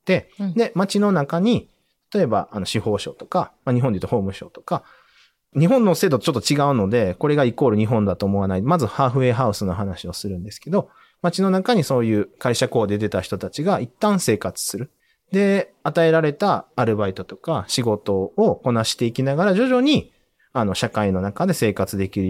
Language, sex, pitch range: Japanese, male, 105-170 Hz